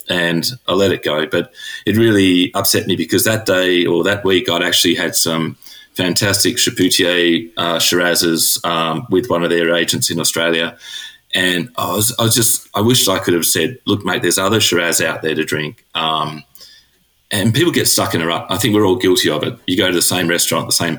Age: 30-49